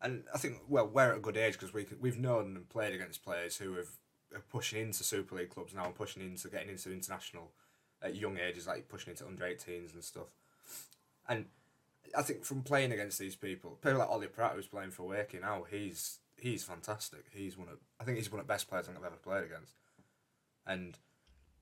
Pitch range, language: 90-115 Hz, English